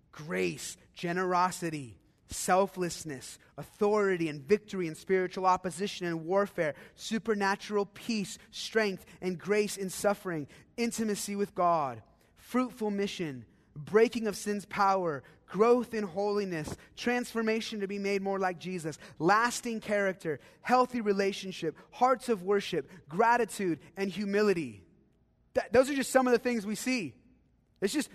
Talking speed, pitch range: 125 wpm, 165-220 Hz